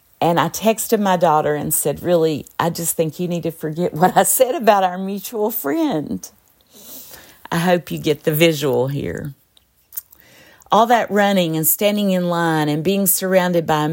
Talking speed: 175 wpm